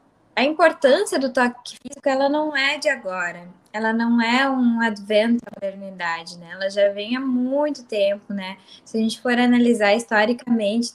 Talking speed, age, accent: 170 wpm, 10-29, Brazilian